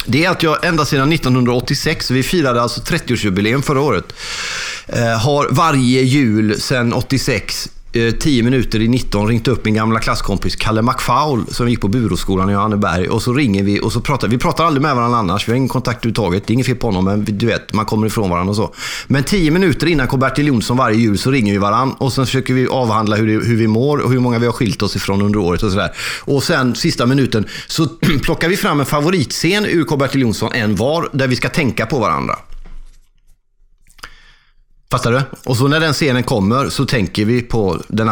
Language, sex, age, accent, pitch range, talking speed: Swedish, male, 30-49, native, 110-140 Hz, 215 wpm